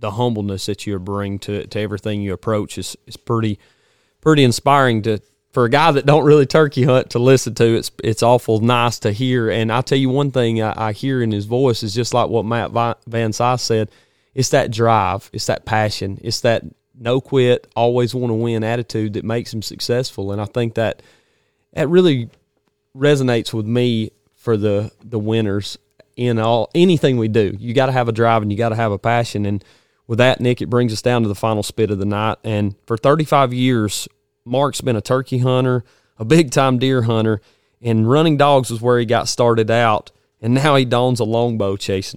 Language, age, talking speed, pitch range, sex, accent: English, 30-49, 210 wpm, 110-130 Hz, male, American